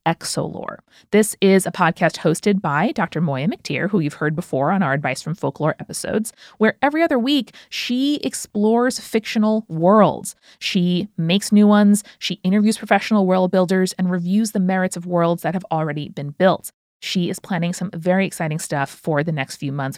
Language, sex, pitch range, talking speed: English, female, 170-220 Hz, 180 wpm